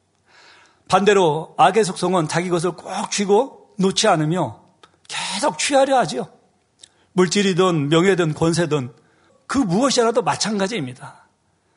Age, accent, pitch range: 50-69, native, 155-210 Hz